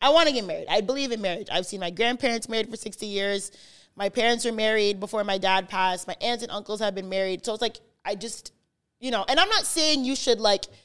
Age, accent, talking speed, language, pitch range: 20-39, American, 255 wpm, English, 195-245 Hz